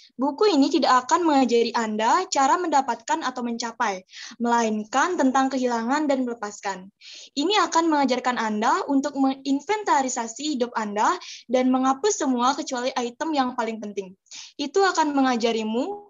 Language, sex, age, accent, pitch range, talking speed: Indonesian, female, 10-29, native, 240-305 Hz, 125 wpm